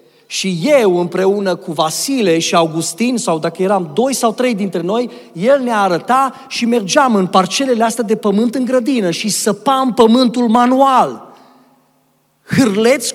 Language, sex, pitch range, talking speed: Romanian, male, 175-260 Hz, 145 wpm